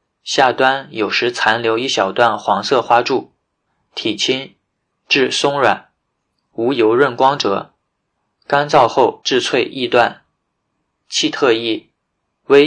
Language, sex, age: Chinese, male, 20-39